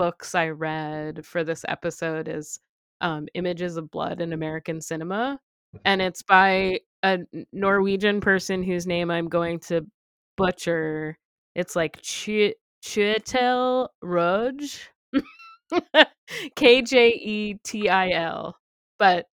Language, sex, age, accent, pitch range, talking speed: English, female, 20-39, American, 160-200 Hz, 115 wpm